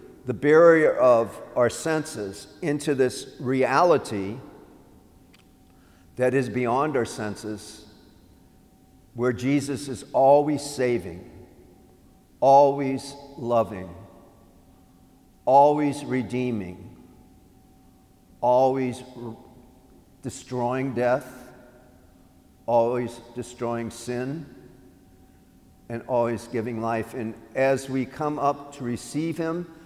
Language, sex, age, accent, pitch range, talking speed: English, male, 50-69, American, 115-135 Hz, 80 wpm